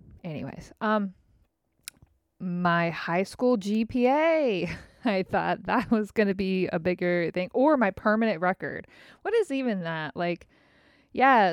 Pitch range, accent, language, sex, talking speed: 170-210 Hz, American, English, female, 135 wpm